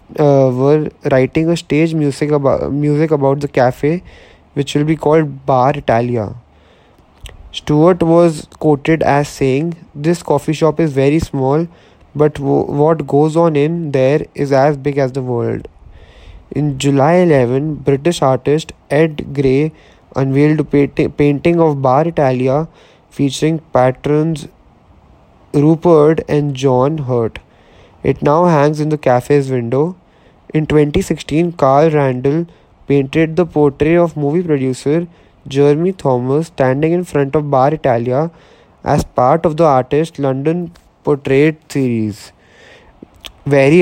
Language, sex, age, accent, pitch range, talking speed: Italian, male, 20-39, Indian, 135-160 Hz, 125 wpm